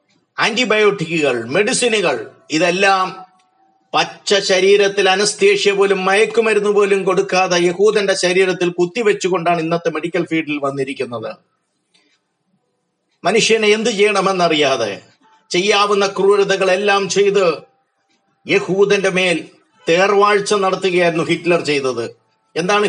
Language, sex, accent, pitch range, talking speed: Malayalam, male, native, 175-205 Hz, 80 wpm